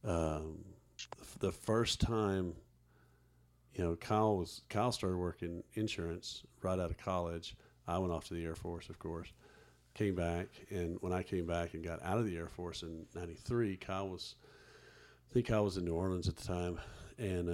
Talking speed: 185 wpm